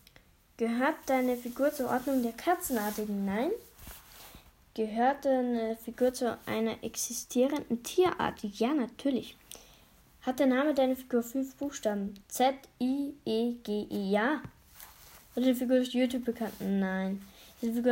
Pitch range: 220-265 Hz